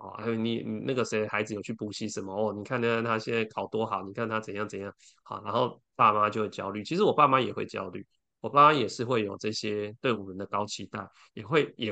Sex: male